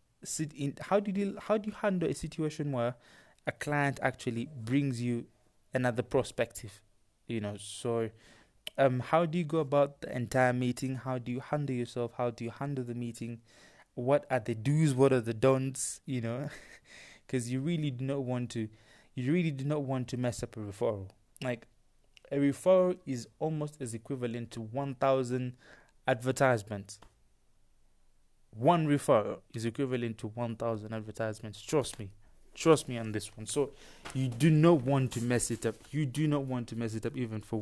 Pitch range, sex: 115-145 Hz, male